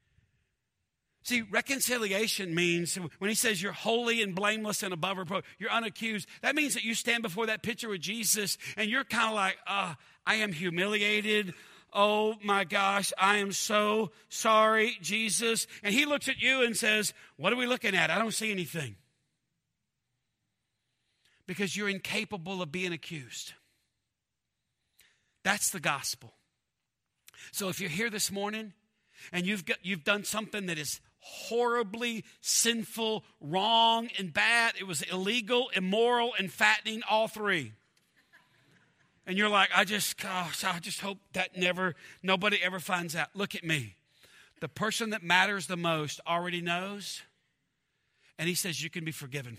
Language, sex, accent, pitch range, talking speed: English, male, American, 170-215 Hz, 155 wpm